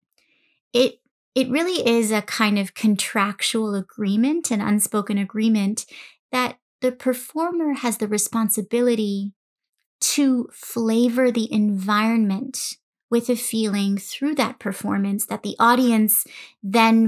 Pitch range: 210-255 Hz